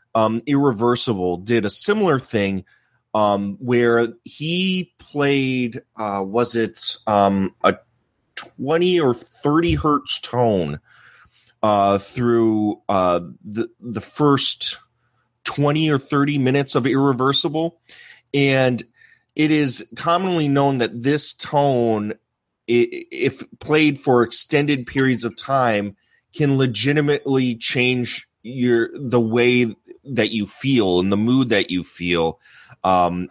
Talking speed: 115 wpm